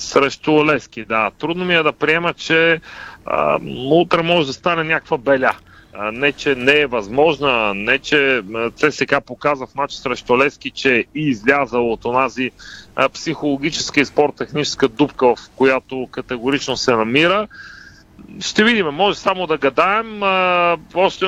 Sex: male